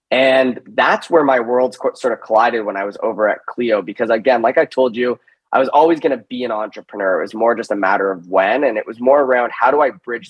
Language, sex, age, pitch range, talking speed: English, male, 20-39, 110-130 Hz, 260 wpm